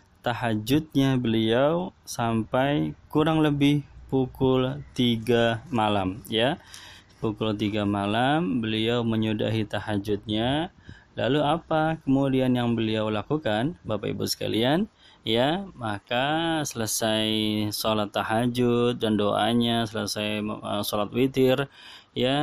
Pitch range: 105-130 Hz